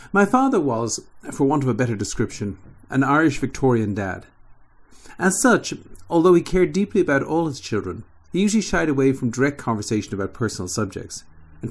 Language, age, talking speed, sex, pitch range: English, 50-69, 175 wpm, male, 110-145 Hz